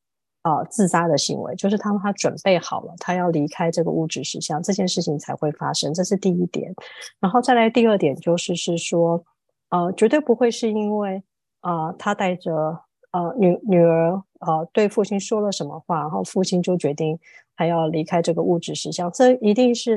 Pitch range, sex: 170-220 Hz, female